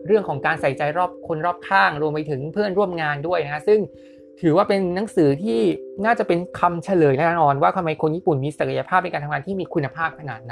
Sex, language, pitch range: male, Thai, 150-205 Hz